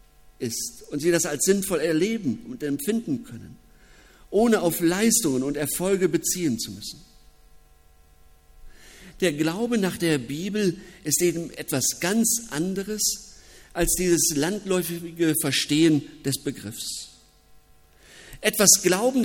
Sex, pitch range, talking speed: male, 145-195 Hz, 110 wpm